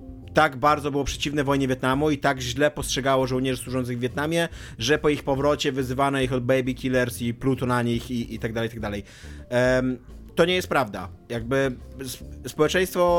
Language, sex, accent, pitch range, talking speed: Polish, male, native, 120-155 Hz, 180 wpm